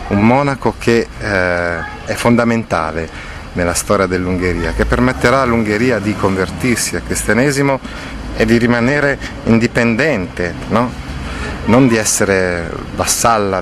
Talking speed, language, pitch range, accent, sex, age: 110 wpm, Italian, 90-120 Hz, native, male, 30-49